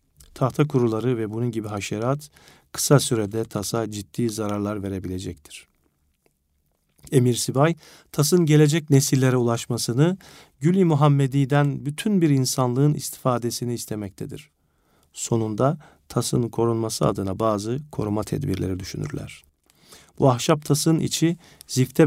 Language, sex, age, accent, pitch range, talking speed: Turkish, male, 50-69, native, 110-145 Hz, 105 wpm